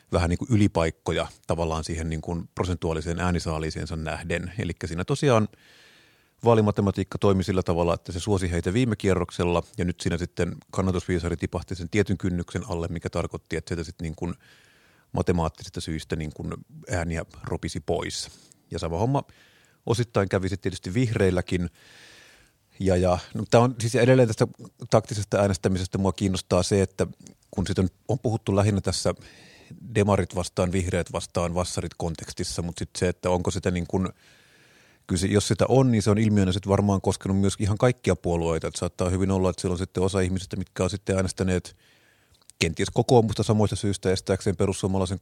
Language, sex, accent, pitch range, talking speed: Finnish, male, native, 90-105 Hz, 165 wpm